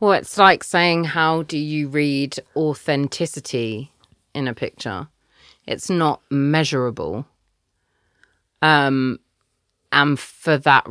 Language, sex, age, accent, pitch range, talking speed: English, female, 30-49, British, 120-145 Hz, 105 wpm